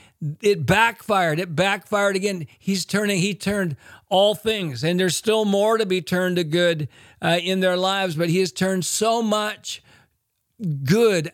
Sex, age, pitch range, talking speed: male, 50-69, 165-195 Hz, 165 wpm